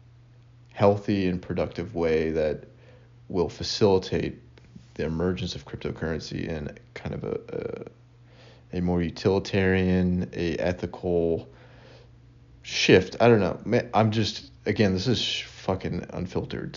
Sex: male